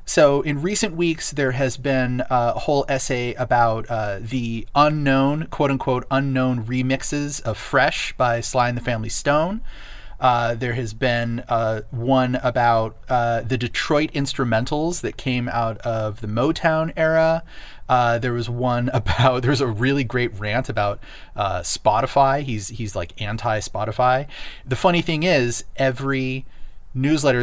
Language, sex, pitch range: English, male, 115-145 Hz